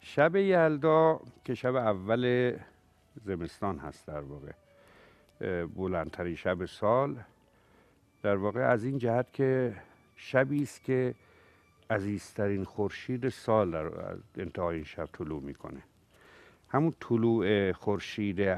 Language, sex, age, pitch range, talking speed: Persian, male, 60-79, 95-120 Hz, 105 wpm